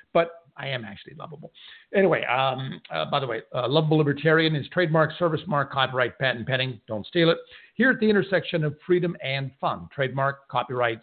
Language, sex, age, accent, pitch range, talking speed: English, male, 60-79, American, 130-170 Hz, 185 wpm